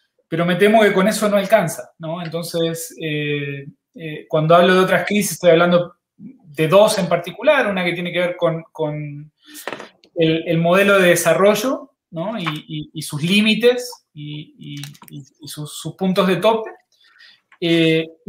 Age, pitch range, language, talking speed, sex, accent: 20-39, 155-190 Hz, Spanish, 165 wpm, male, Argentinian